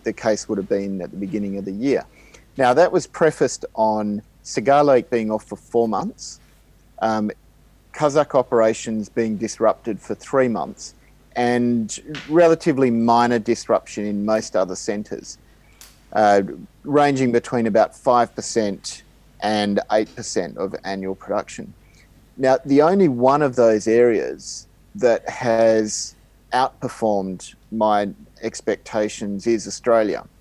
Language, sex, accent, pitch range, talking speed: English, male, Australian, 100-120 Hz, 120 wpm